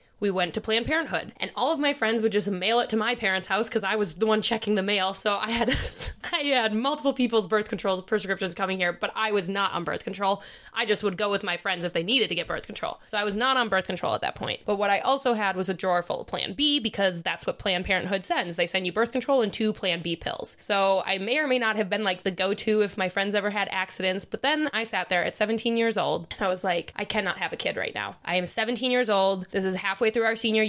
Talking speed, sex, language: 285 wpm, female, English